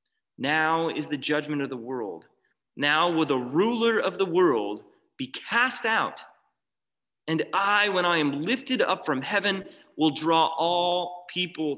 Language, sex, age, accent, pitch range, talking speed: English, male, 30-49, American, 145-200 Hz, 155 wpm